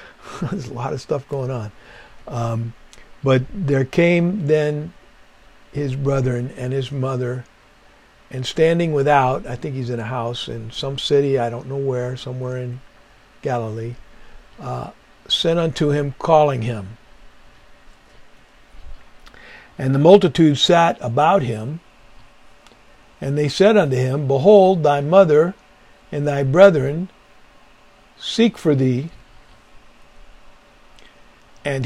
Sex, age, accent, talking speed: male, 60-79, American, 120 wpm